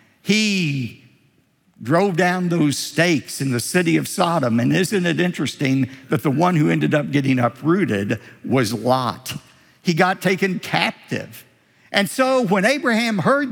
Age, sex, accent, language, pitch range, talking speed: 60-79, male, American, English, 125-195 Hz, 145 wpm